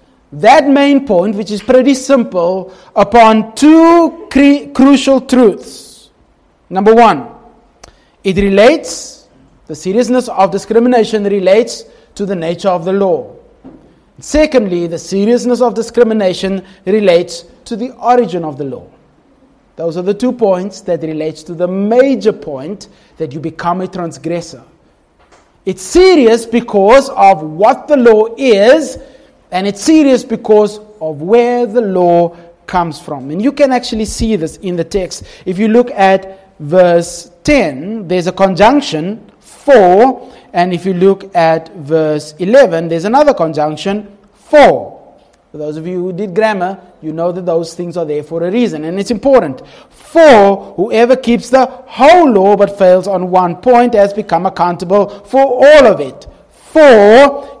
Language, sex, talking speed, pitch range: English, male, 145 wpm, 180-245 Hz